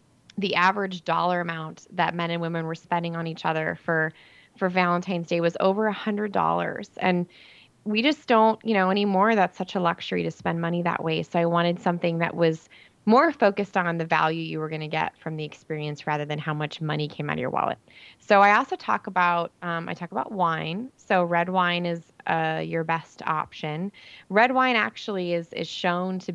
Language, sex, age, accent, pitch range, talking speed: English, female, 20-39, American, 160-180 Hz, 210 wpm